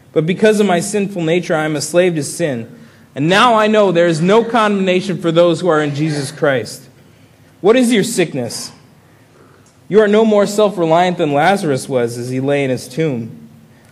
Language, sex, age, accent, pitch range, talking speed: English, male, 20-39, American, 125-165 Hz, 195 wpm